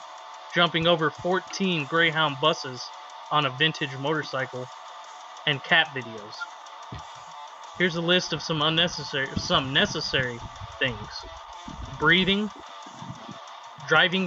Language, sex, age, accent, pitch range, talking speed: English, male, 30-49, American, 145-170 Hz, 95 wpm